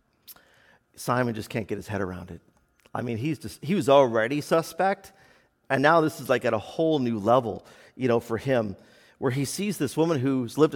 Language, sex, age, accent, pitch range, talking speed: English, male, 40-59, American, 115-155 Hz, 205 wpm